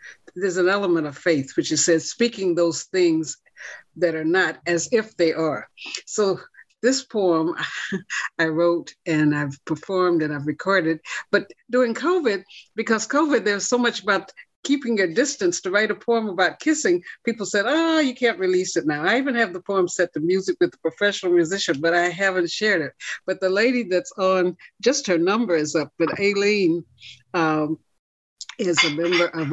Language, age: English, 60-79